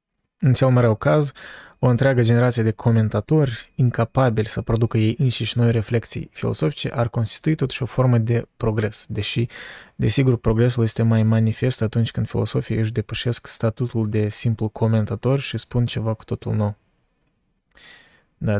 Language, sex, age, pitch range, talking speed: Romanian, male, 20-39, 110-125 Hz, 150 wpm